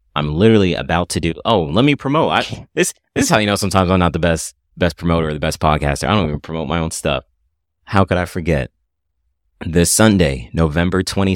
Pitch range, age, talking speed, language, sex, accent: 80-105 Hz, 30-49, 215 wpm, English, male, American